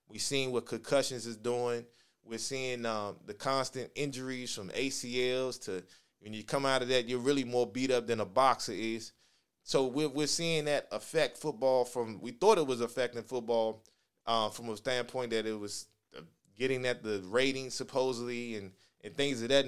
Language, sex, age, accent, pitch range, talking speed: English, male, 20-39, American, 120-145 Hz, 190 wpm